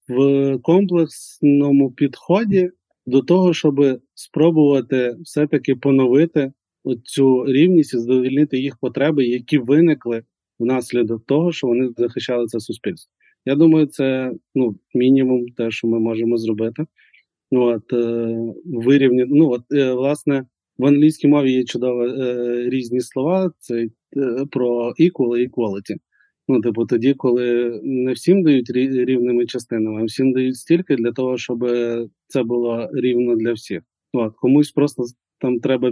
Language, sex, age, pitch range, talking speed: Ukrainian, male, 20-39, 120-140 Hz, 135 wpm